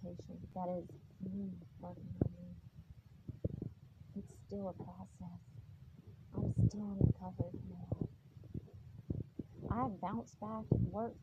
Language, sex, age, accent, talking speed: English, female, 40-59, American, 100 wpm